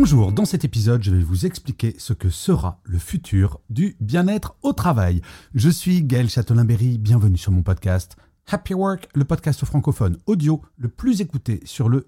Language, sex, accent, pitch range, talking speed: French, male, French, 95-150 Hz, 180 wpm